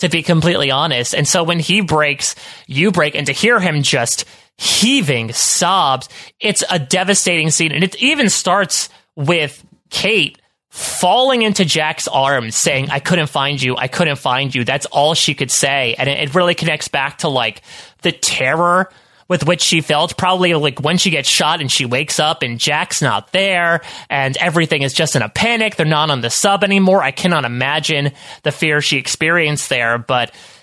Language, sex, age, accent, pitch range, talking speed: English, male, 30-49, American, 140-180 Hz, 185 wpm